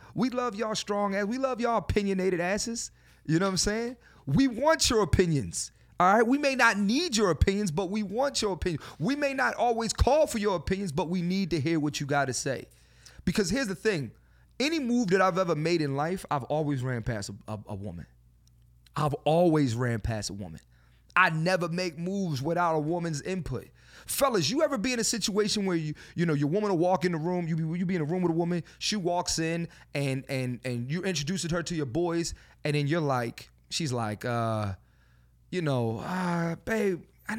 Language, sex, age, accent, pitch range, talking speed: English, male, 30-49, American, 135-205 Hz, 215 wpm